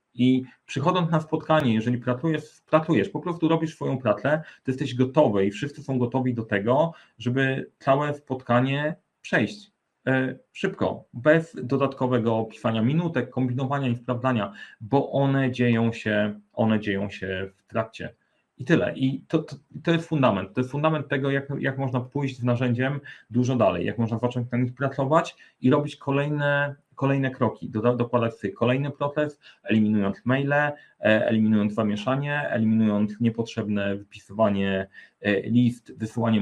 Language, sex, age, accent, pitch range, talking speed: Polish, male, 30-49, native, 105-135 Hz, 140 wpm